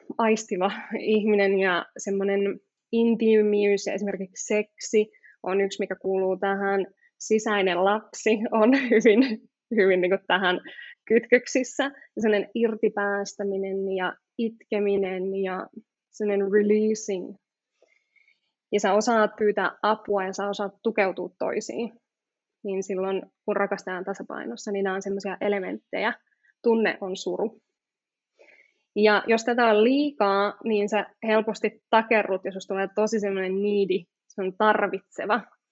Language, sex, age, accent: Finnish, female, 20-39, native